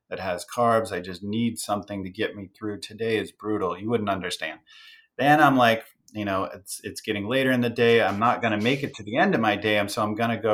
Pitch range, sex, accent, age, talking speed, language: 100-120 Hz, male, American, 30-49, 270 wpm, English